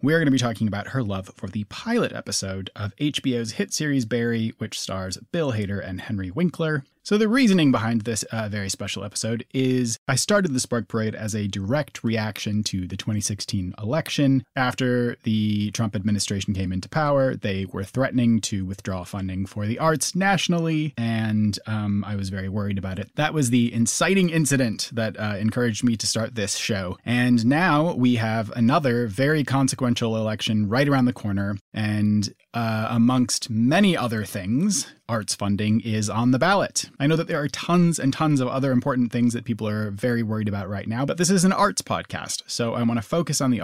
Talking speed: 195 wpm